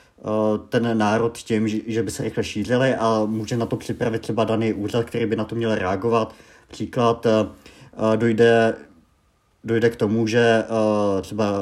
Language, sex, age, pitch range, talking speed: Czech, male, 50-69, 105-125 Hz, 150 wpm